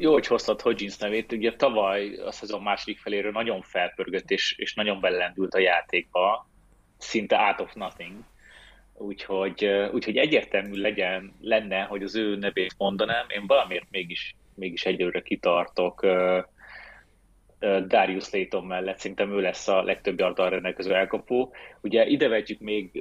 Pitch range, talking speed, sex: 95-115 Hz, 140 wpm, male